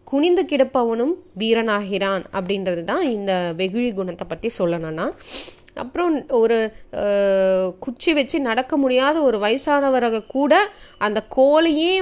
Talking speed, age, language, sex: 100 wpm, 30-49, Tamil, female